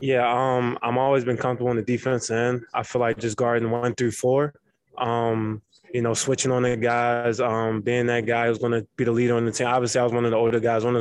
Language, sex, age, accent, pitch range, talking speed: English, male, 20-39, American, 115-125 Hz, 265 wpm